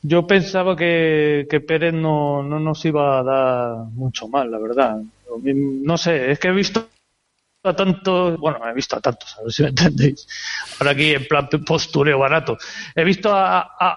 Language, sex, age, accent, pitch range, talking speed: Spanish, male, 30-49, Spanish, 150-195 Hz, 185 wpm